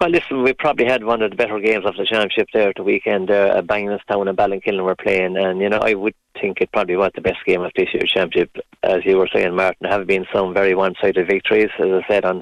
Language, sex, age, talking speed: English, male, 30-49, 265 wpm